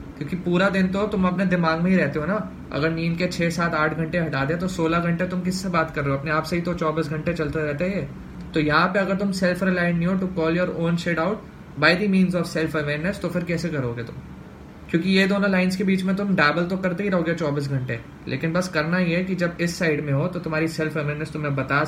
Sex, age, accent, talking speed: male, 20-39, native, 270 wpm